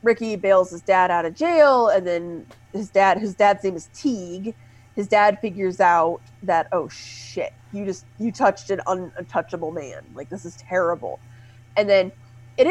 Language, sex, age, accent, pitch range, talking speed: English, female, 30-49, American, 155-220 Hz, 175 wpm